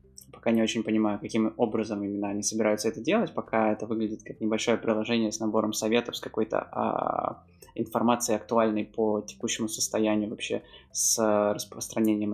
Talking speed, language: 150 wpm, Russian